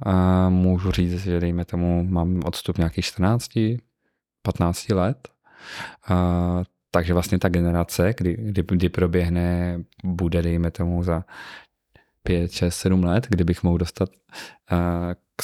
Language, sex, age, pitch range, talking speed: Czech, male, 20-39, 90-95 Hz, 130 wpm